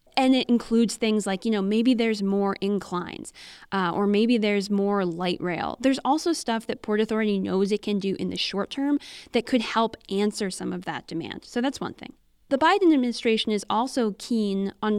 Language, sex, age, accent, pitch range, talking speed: English, female, 10-29, American, 195-240 Hz, 205 wpm